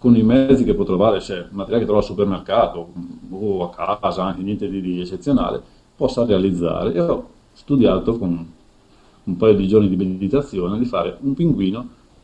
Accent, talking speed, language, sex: native, 170 wpm, Italian, male